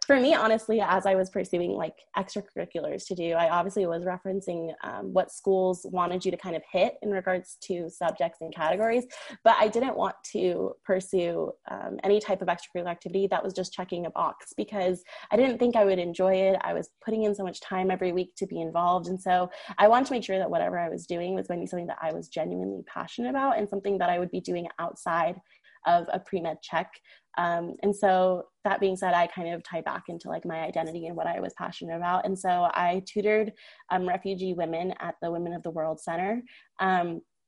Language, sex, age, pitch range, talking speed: English, female, 20-39, 175-200 Hz, 225 wpm